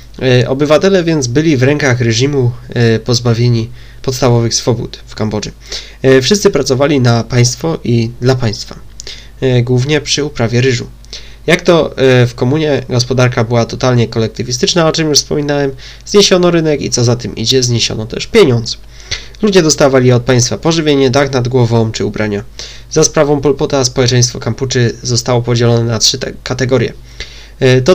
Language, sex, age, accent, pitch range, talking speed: Polish, male, 20-39, native, 120-140 Hz, 140 wpm